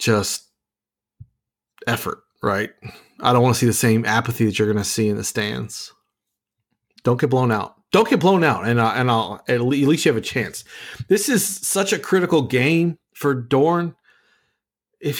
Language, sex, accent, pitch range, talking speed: English, male, American, 115-155 Hz, 180 wpm